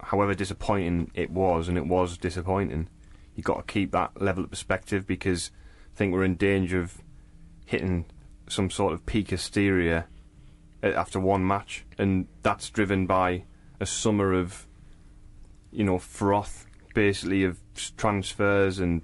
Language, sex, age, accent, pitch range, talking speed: English, male, 20-39, British, 90-100 Hz, 145 wpm